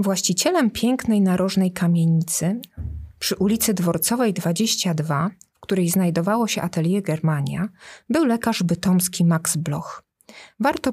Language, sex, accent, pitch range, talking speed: Polish, female, native, 170-210 Hz, 110 wpm